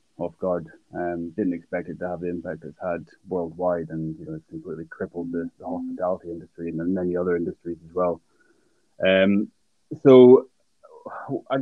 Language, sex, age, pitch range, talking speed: English, male, 20-39, 90-105 Hz, 165 wpm